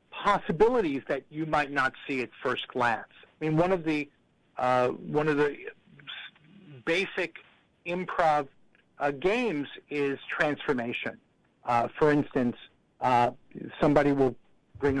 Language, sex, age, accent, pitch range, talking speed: English, male, 50-69, American, 135-165 Hz, 125 wpm